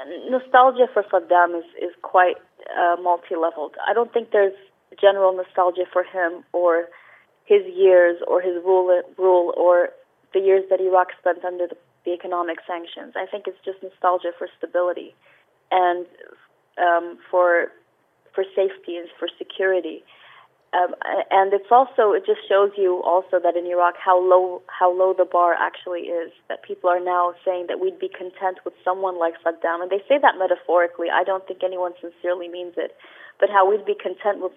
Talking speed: 175 wpm